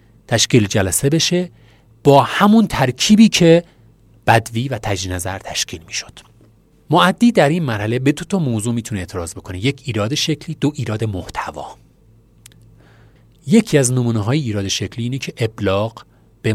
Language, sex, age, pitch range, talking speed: Persian, male, 40-59, 105-145 Hz, 145 wpm